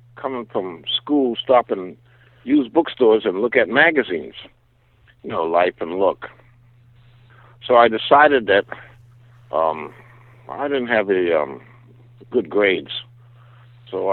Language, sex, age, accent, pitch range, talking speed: English, male, 60-79, American, 100-120 Hz, 125 wpm